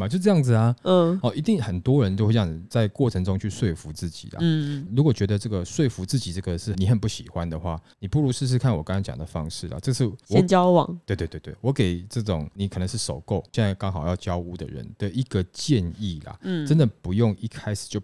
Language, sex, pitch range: Chinese, male, 95-130 Hz